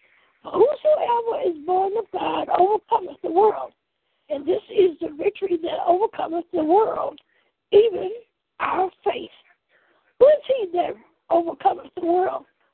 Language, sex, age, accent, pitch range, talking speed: English, female, 60-79, American, 345-445 Hz, 125 wpm